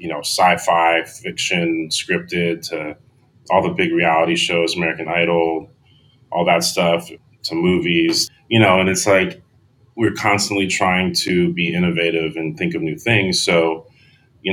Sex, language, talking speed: male, English, 150 wpm